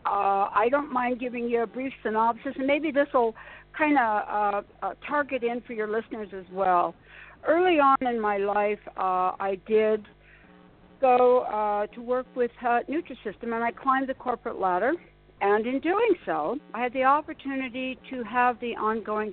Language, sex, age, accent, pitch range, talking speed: English, female, 60-79, American, 215-270 Hz, 170 wpm